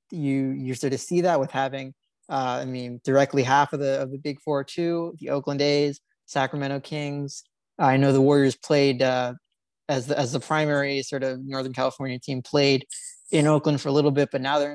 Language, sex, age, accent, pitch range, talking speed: English, male, 20-39, American, 135-160 Hz, 210 wpm